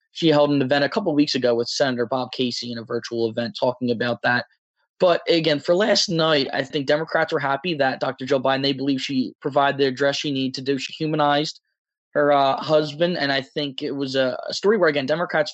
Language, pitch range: English, 130-160 Hz